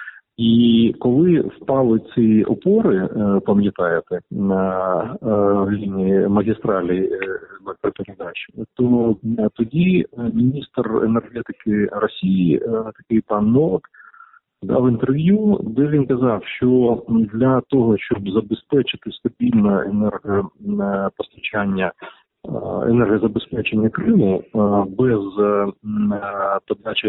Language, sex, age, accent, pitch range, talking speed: Ukrainian, male, 40-59, native, 105-145 Hz, 75 wpm